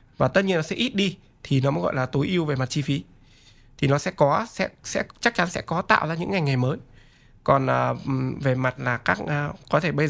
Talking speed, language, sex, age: 255 wpm, Vietnamese, male, 20-39